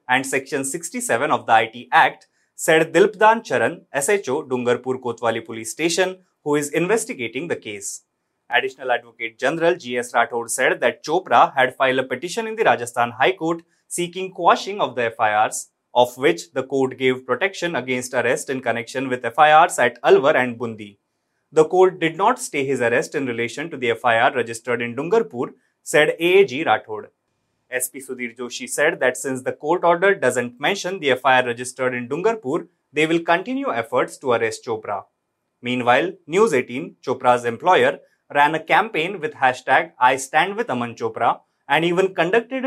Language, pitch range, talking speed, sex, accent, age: English, 125-175 Hz, 165 wpm, male, Indian, 20-39